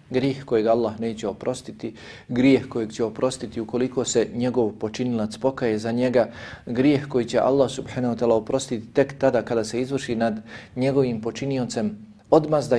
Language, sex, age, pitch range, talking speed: English, male, 40-59, 115-140 Hz, 155 wpm